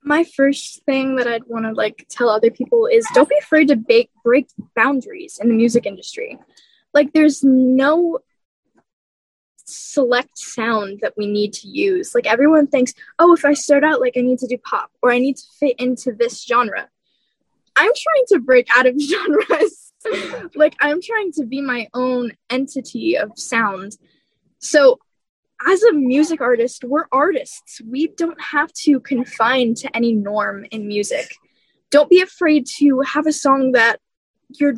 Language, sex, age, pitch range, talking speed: English, female, 10-29, 250-330 Hz, 165 wpm